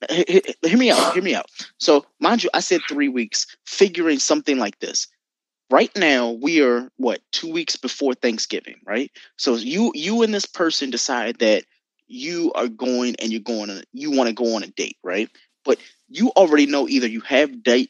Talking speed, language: 205 wpm, English